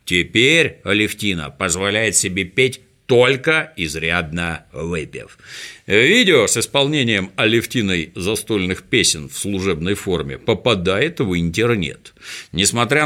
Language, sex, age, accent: Russian, male, 50-69, native